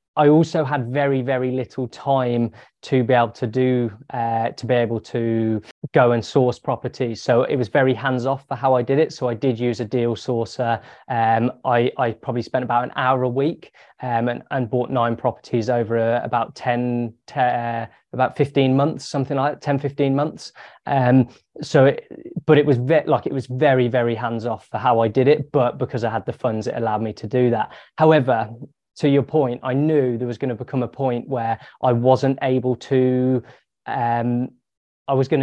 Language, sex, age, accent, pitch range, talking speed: English, male, 20-39, British, 120-135 Hz, 210 wpm